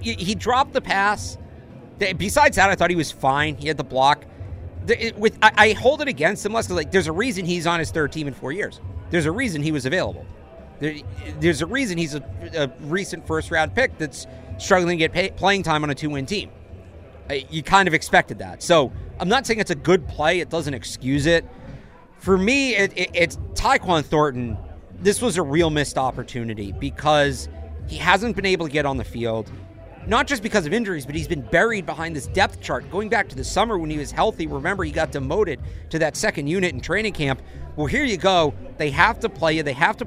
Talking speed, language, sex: 215 wpm, English, male